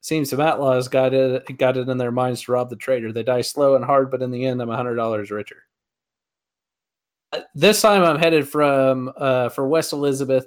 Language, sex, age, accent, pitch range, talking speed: English, male, 20-39, American, 125-155 Hz, 200 wpm